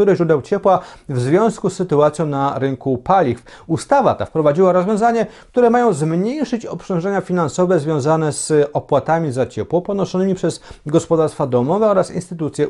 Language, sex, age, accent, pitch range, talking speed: Polish, male, 40-59, native, 145-195 Hz, 140 wpm